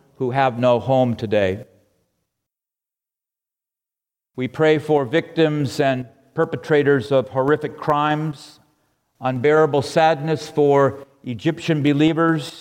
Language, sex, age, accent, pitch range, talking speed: English, male, 50-69, American, 130-155 Hz, 90 wpm